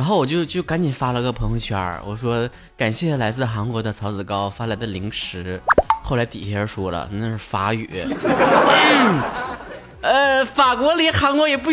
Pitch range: 115-170 Hz